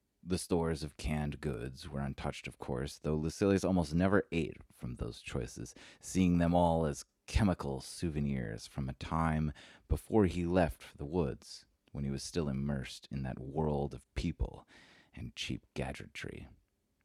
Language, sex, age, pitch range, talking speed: English, male, 30-49, 70-85 Hz, 160 wpm